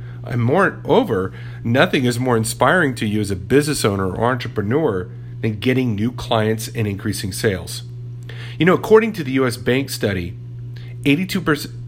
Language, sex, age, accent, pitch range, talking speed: English, male, 40-59, American, 115-140 Hz, 150 wpm